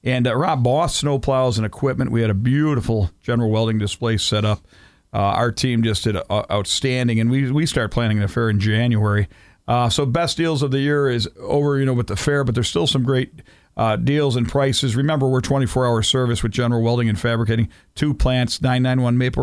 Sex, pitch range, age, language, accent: male, 115-135 Hz, 50-69, Japanese, American